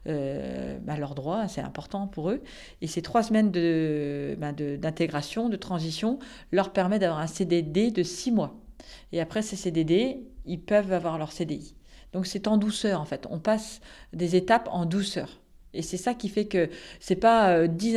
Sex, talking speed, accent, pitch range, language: female, 190 wpm, French, 160-195 Hz, French